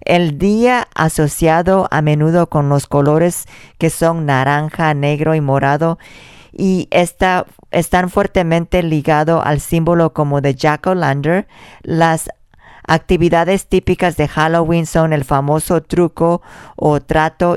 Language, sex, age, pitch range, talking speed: English, female, 40-59, 150-170 Hz, 125 wpm